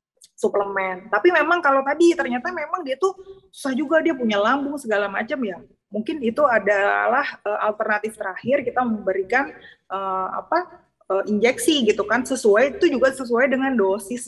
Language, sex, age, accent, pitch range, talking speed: Indonesian, female, 20-39, native, 200-250 Hz, 155 wpm